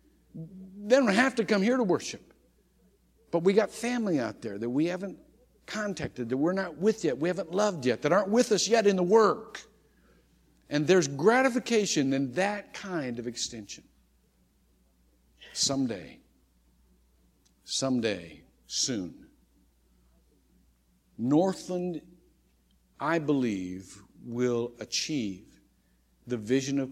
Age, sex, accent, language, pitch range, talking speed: 50-69, male, American, English, 110-175 Hz, 120 wpm